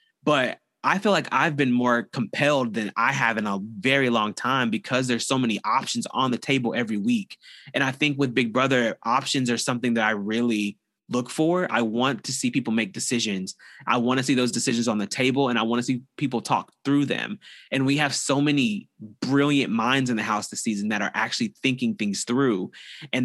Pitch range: 115-145 Hz